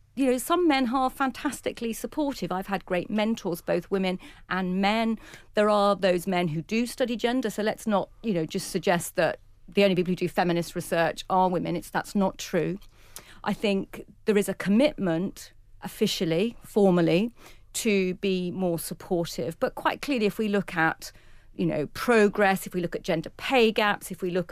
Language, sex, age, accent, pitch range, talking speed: English, female, 40-59, British, 165-205 Hz, 185 wpm